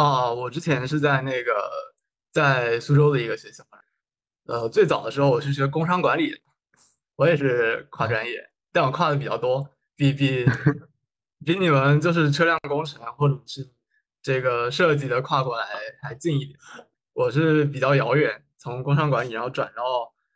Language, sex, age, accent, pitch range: Chinese, male, 20-39, native, 125-150 Hz